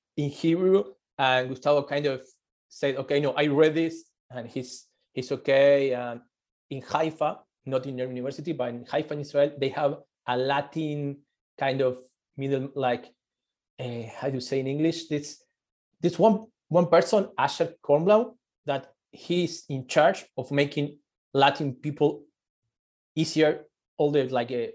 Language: English